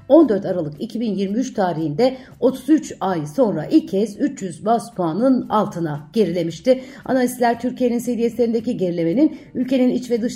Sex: female